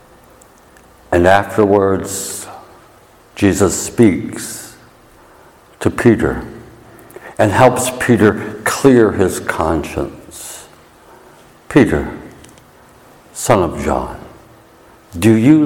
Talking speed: 70 wpm